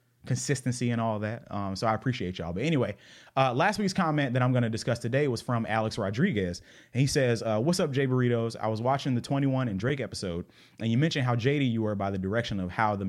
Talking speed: 250 wpm